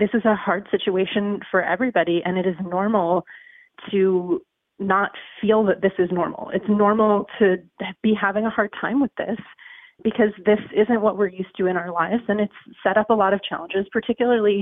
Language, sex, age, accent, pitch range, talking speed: English, female, 30-49, American, 185-225 Hz, 195 wpm